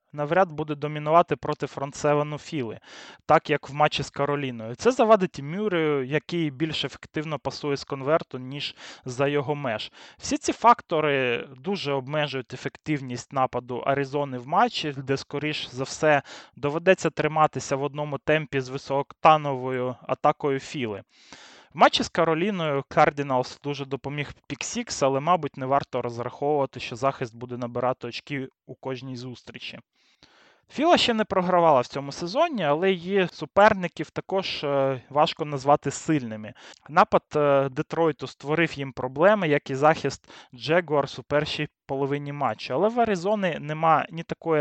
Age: 20-39